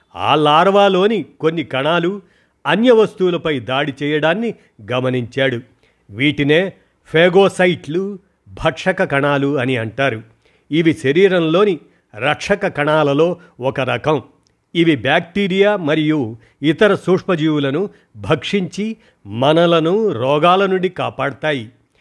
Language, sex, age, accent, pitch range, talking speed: Telugu, male, 50-69, native, 135-175 Hz, 85 wpm